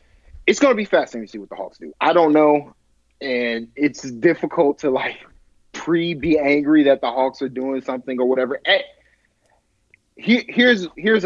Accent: American